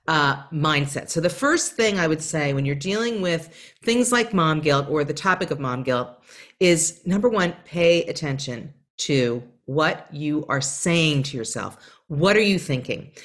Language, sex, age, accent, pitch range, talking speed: English, female, 40-59, American, 145-215 Hz, 175 wpm